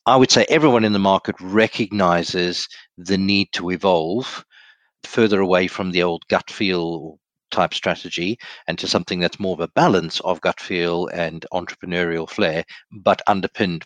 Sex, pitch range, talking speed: male, 90-110 Hz, 160 wpm